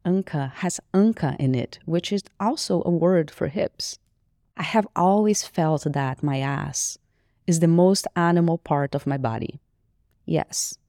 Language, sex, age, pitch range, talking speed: English, female, 30-49, 135-180 Hz, 155 wpm